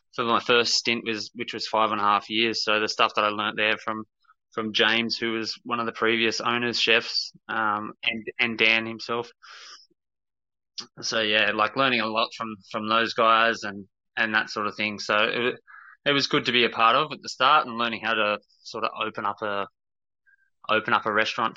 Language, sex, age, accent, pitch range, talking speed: English, male, 20-39, Australian, 105-115 Hz, 215 wpm